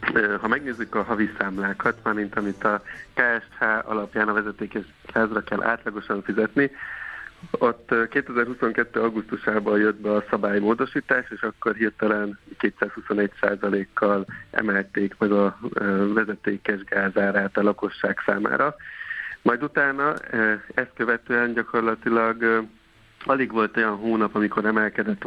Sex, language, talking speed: male, Hungarian, 115 wpm